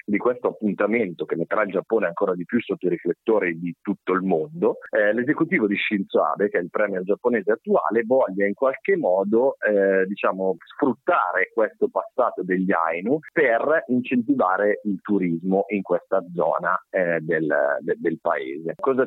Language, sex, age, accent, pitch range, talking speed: Italian, male, 40-59, native, 90-115 Hz, 160 wpm